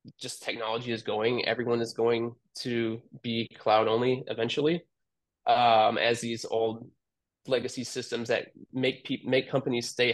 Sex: male